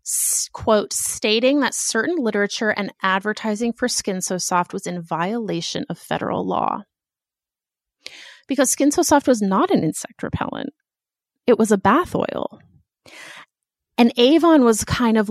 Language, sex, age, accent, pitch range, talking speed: English, female, 30-49, American, 190-265 Hz, 140 wpm